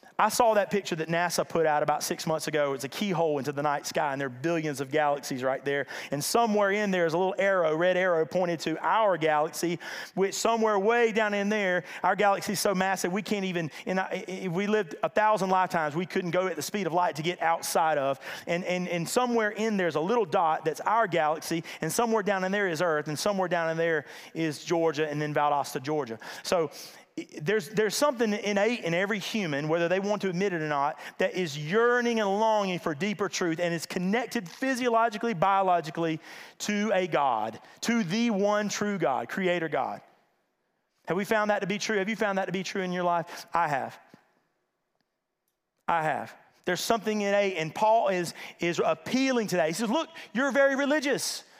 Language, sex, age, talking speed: English, male, 30-49, 210 wpm